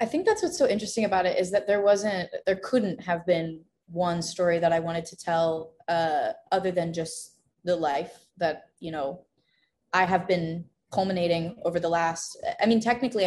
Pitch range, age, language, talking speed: 170-200 Hz, 20-39, English, 190 wpm